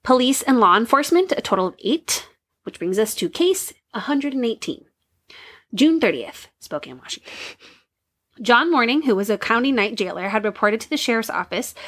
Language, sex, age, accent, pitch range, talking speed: English, female, 20-39, American, 210-285 Hz, 160 wpm